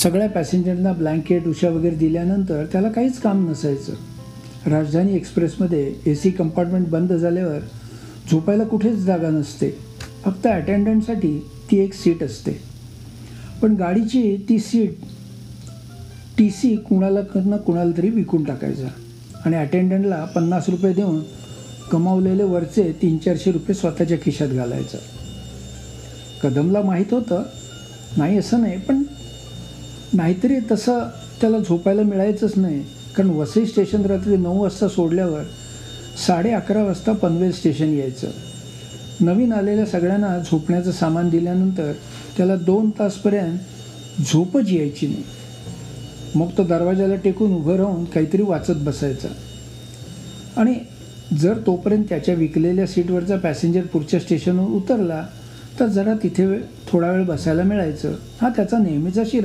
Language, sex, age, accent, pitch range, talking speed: Marathi, male, 60-79, native, 155-200 Hz, 125 wpm